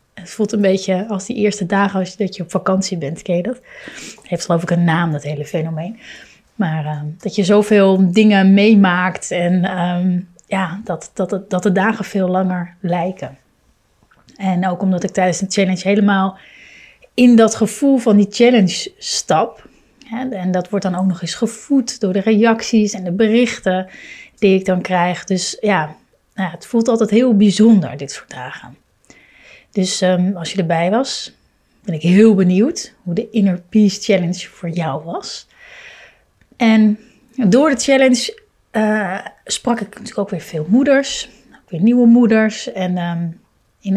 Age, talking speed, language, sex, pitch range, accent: 30-49, 170 wpm, Dutch, female, 185-225 Hz, Dutch